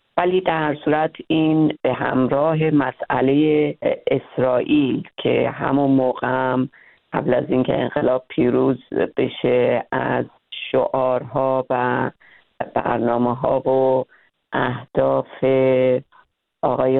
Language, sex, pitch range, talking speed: Persian, female, 135-165 Hz, 90 wpm